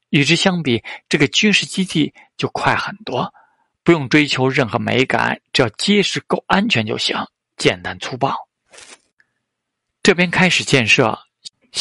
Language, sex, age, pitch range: Chinese, male, 50-69, 125-175 Hz